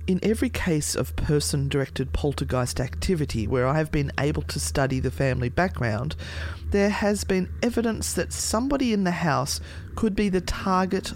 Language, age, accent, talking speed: English, 30-49, Australian, 160 wpm